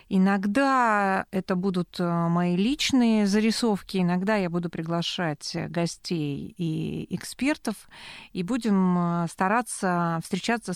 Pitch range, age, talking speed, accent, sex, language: 180-220 Hz, 30-49, 95 wpm, native, female, Russian